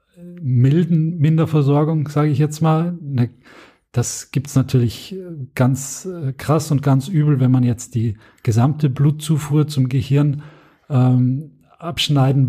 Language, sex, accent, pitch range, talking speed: German, male, German, 125-145 Hz, 120 wpm